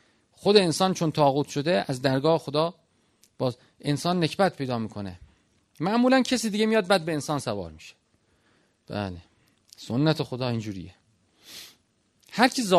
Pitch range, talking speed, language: 125-185 Hz, 125 wpm, Persian